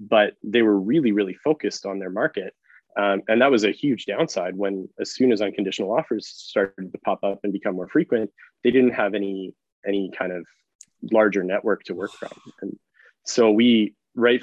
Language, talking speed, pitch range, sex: English, 190 wpm, 95-110 Hz, male